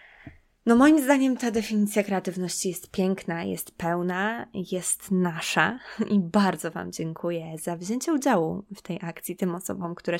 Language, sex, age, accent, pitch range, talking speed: Polish, female, 20-39, native, 170-200 Hz, 145 wpm